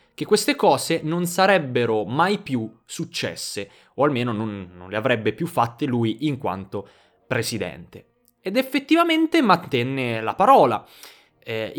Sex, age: male, 20-39